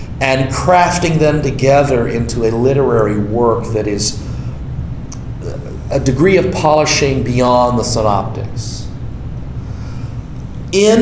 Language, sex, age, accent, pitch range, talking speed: English, male, 50-69, American, 110-145 Hz, 100 wpm